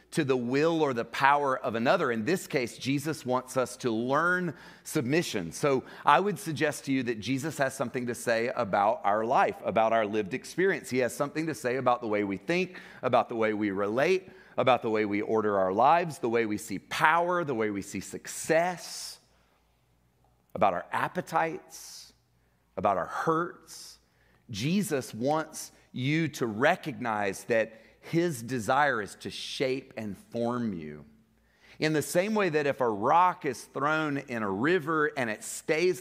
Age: 30-49